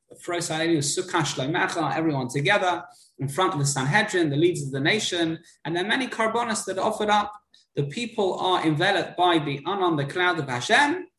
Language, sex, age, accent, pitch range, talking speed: English, male, 20-39, British, 145-195 Hz, 170 wpm